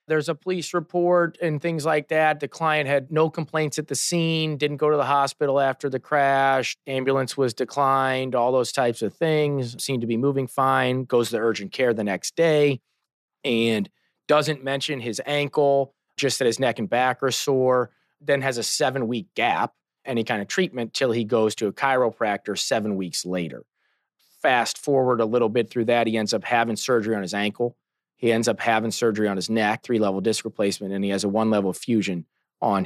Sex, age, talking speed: male, 30-49, 200 wpm